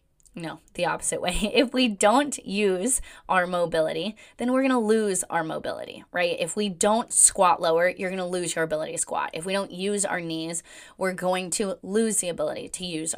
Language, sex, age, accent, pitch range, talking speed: English, female, 20-39, American, 180-255 Hz, 205 wpm